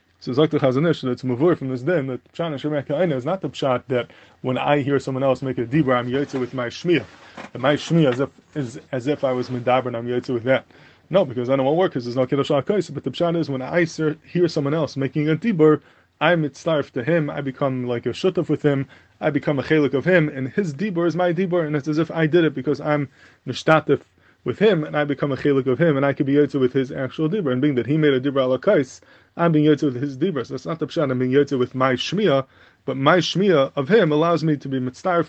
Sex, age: male, 20-39